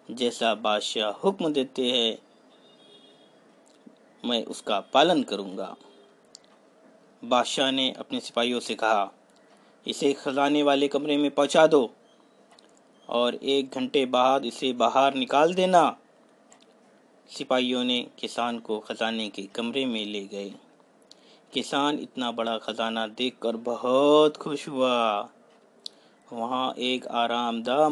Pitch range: 120-160 Hz